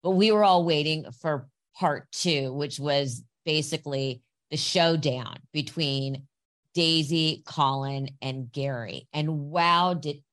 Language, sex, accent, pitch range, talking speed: English, female, American, 140-170 Hz, 120 wpm